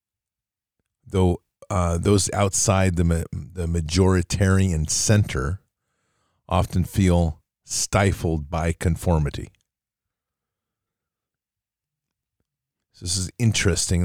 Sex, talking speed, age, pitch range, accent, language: male, 75 wpm, 40-59, 85-100 Hz, American, English